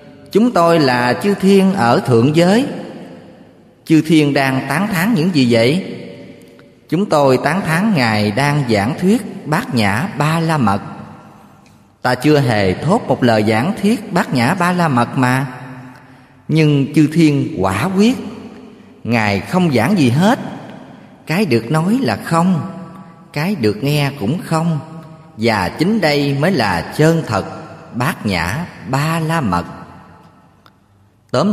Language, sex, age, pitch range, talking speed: Vietnamese, male, 20-39, 115-175 Hz, 145 wpm